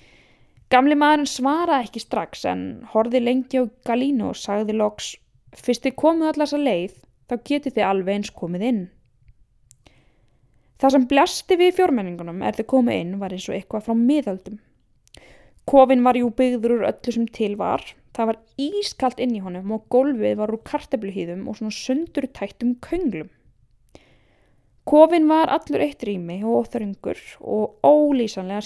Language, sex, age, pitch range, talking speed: English, female, 10-29, 205-285 Hz, 150 wpm